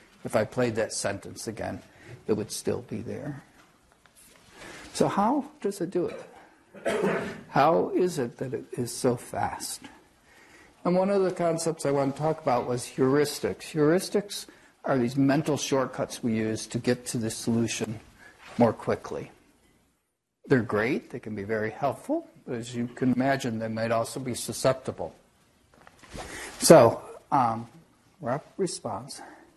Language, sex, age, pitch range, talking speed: English, male, 60-79, 125-190 Hz, 145 wpm